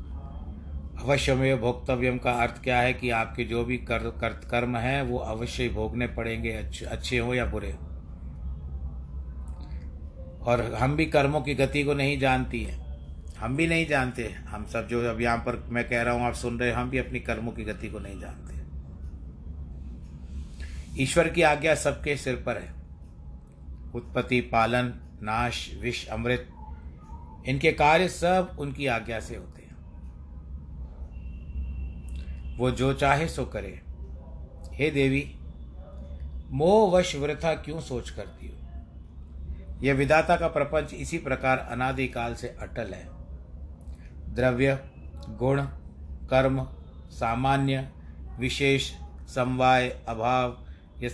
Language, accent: Hindi, native